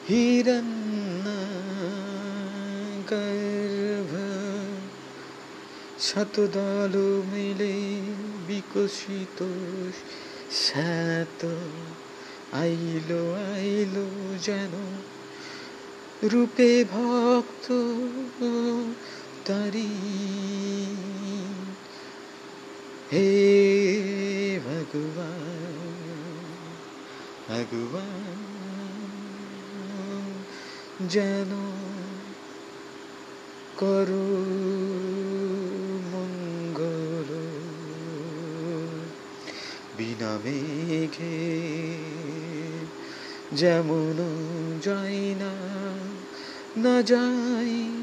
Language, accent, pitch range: Bengali, native, 170-210 Hz